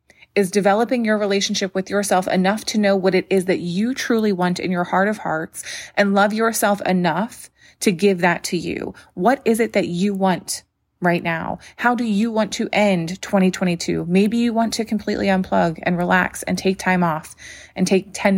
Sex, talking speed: female, 195 wpm